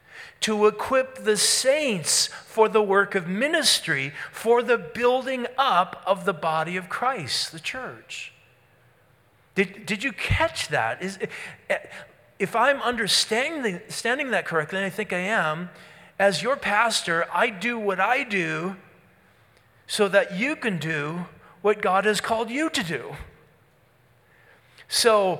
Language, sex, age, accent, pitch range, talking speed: English, male, 40-59, American, 140-200 Hz, 135 wpm